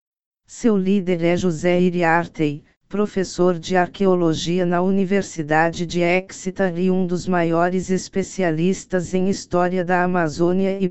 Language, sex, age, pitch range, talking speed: Portuguese, female, 50-69, 170-190 Hz, 120 wpm